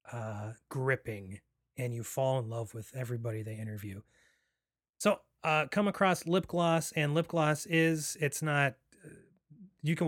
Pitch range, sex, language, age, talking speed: 125-155 Hz, male, English, 30-49, 150 wpm